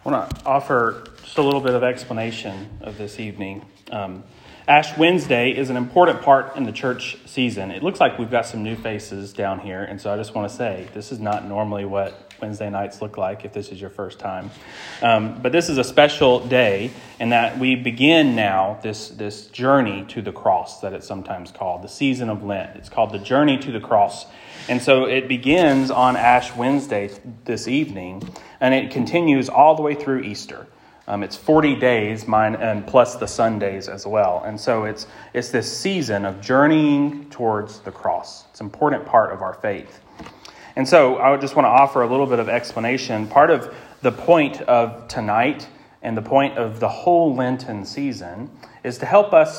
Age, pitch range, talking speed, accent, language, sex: 30-49, 105-135 Hz, 200 wpm, American, English, male